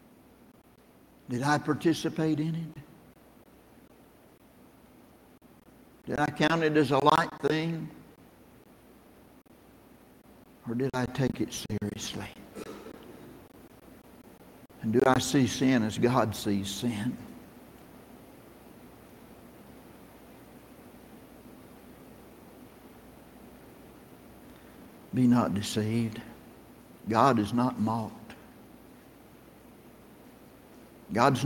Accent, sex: American, male